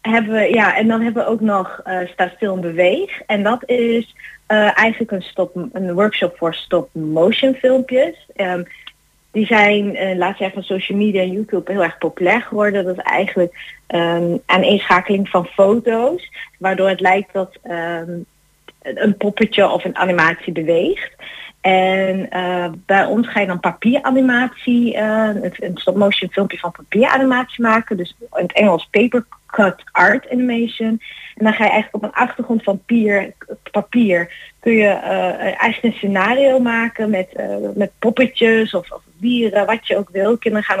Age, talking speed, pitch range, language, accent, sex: 30-49, 170 wpm, 185-225 Hz, Dutch, Dutch, female